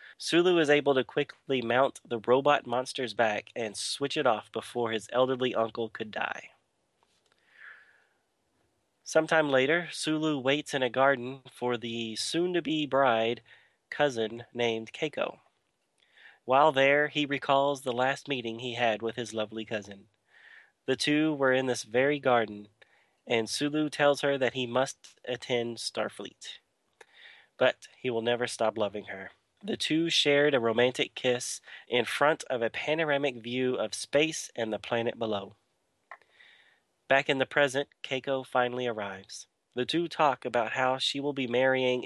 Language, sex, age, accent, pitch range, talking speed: English, male, 30-49, American, 115-140 Hz, 150 wpm